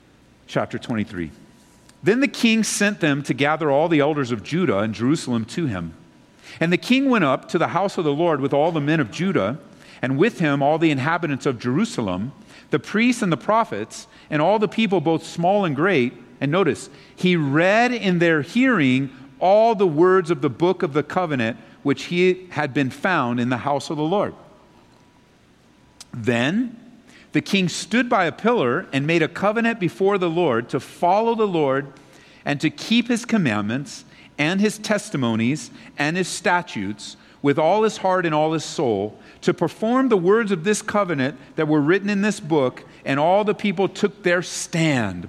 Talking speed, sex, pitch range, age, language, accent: 185 wpm, male, 140-205 Hz, 50-69, English, American